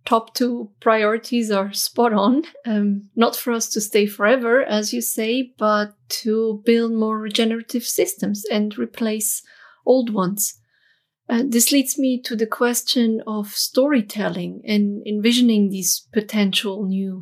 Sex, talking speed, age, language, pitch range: female, 140 wpm, 30-49, English, 205-245 Hz